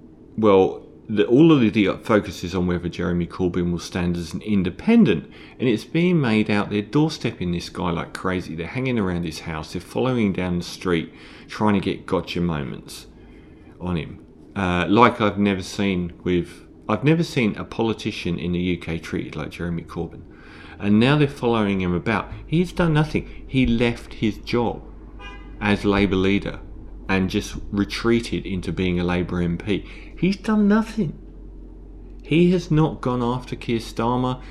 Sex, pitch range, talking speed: male, 85-115 Hz, 160 wpm